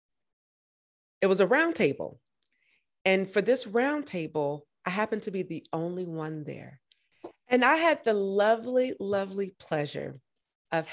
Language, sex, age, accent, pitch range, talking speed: English, female, 30-49, American, 150-220 Hz, 145 wpm